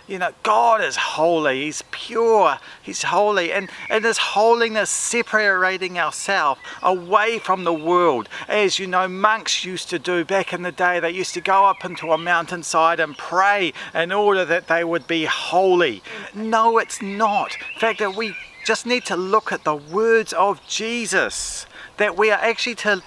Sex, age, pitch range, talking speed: male, 40-59, 180-215 Hz, 175 wpm